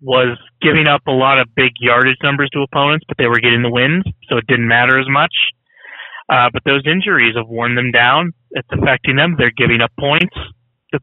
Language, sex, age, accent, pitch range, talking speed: English, male, 30-49, American, 120-140 Hz, 210 wpm